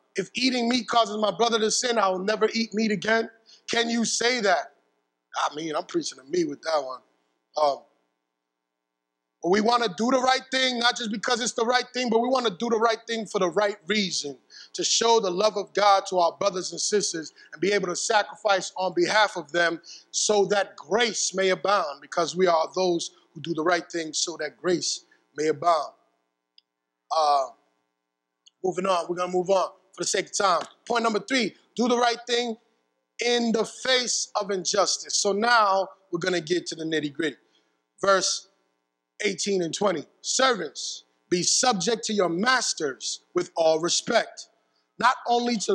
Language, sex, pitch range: English, male, 165-230 Hz